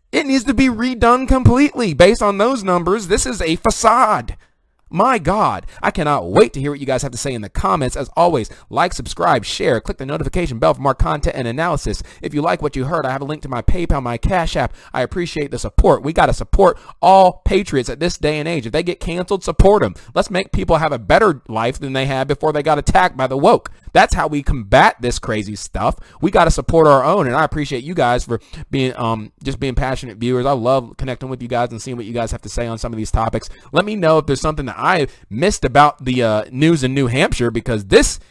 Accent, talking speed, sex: American, 250 wpm, male